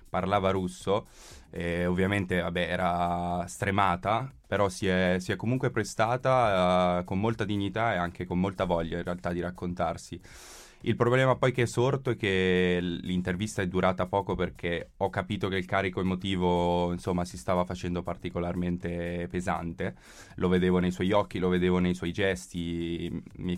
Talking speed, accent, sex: 155 wpm, native, male